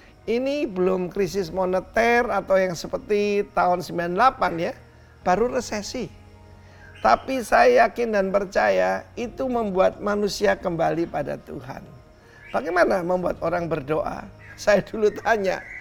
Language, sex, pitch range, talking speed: Indonesian, male, 185-240 Hz, 115 wpm